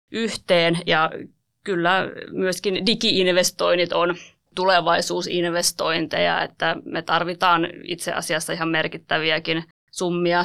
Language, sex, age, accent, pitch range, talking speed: Finnish, female, 20-39, native, 165-185 Hz, 85 wpm